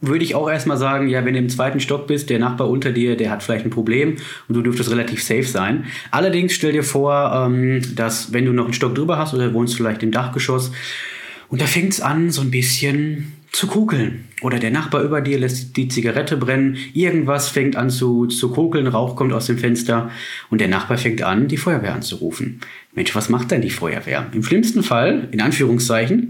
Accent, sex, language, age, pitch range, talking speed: German, male, German, 20-39, 115-145 Hz, 210 wpm